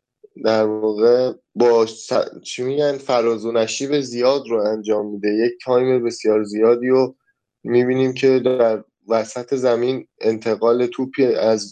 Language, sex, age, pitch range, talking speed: Persian, male, 20-39, 110-130 Hz, 130 wpm